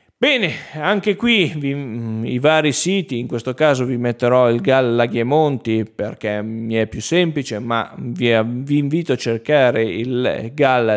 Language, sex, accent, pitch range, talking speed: Italian, male, native, 120-155 Hz, 155 wpm